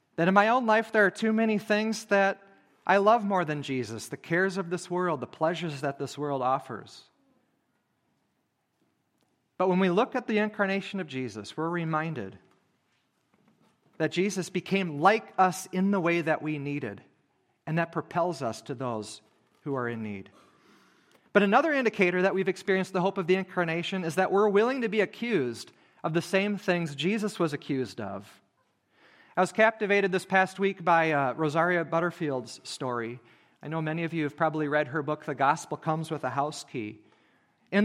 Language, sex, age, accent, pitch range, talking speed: English, male, 40-59, American, 155-205 Hz, 180 wpm